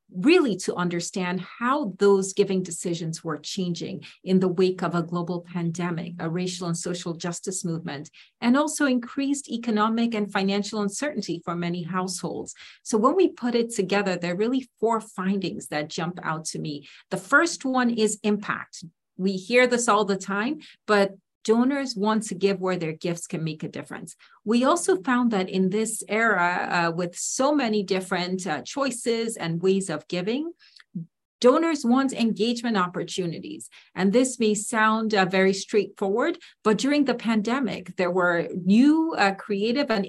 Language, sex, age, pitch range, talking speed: English, female, 40-59, 180-235 Hz, 165 wpm